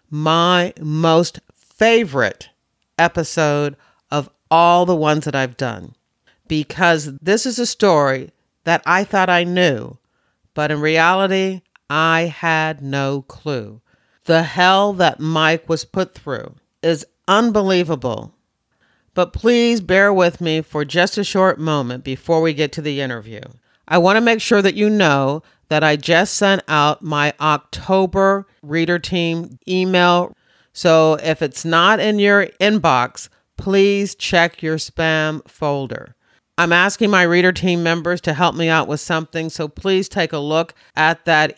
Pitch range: 150-185 Hz